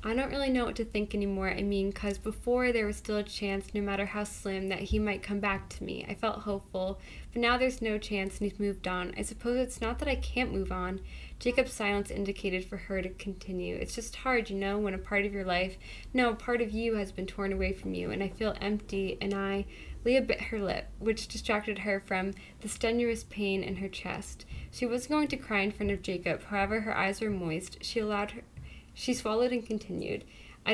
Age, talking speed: 10-29, 235 wpm